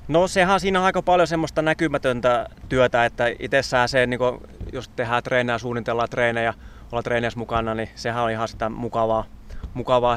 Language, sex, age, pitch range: Finnish, male, 20-39, 115-130 Hz